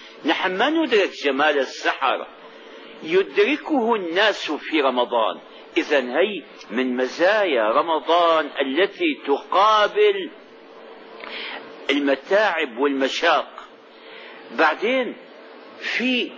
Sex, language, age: male, Arabic, 50-69